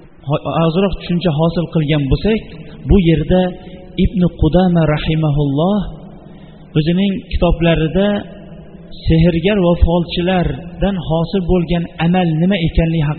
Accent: Turkish